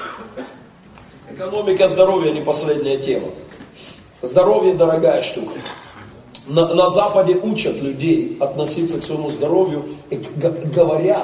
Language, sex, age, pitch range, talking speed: Russian, male, 40-59, 155-210 Hz, 95 wpm